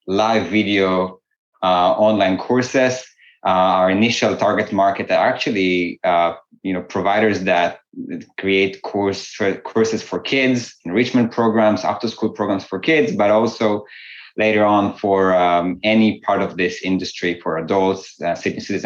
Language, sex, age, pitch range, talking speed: English, male, 20-39, 95-110 Hz, 130 wpm